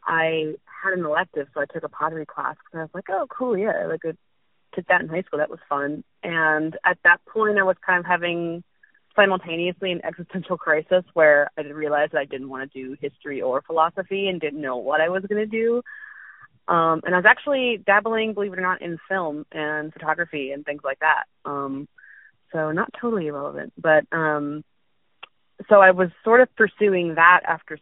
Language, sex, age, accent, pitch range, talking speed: English, female, 30-49, American, 150-185 Hz, 200 wpm